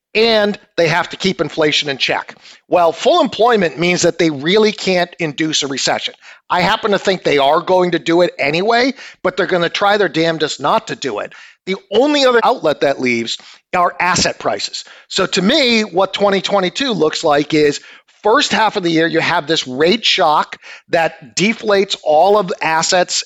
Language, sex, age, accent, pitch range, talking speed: English, male, 50-69, American, 160-210 Hz, 190 wpm